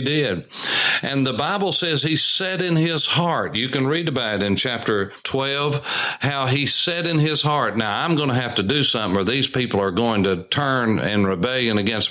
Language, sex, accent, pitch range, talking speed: English, male, American, 115-145 Hz, 210 wpm